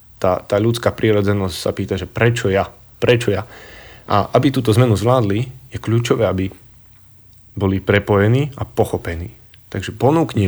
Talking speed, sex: 145 wpm, male